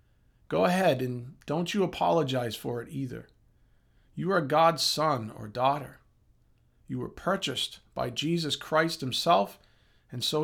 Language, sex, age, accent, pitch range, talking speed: English, male, 40-59, American, 130-175 Hz, 140 wpm